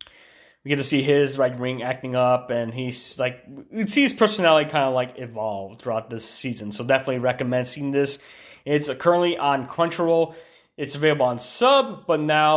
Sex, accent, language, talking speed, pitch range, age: male, American, English, 185 wpm, 120-150 Hz, 20-39